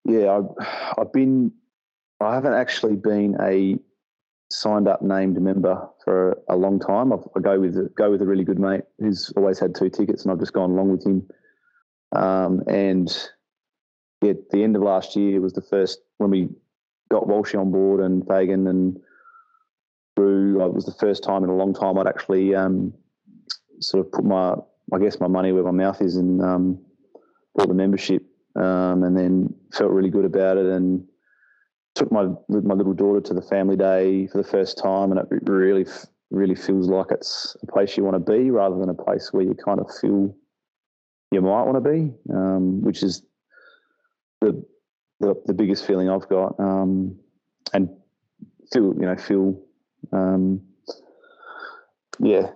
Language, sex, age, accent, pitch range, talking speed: English, male, 20-39, Australian, 95-100 Hz, 180 wpm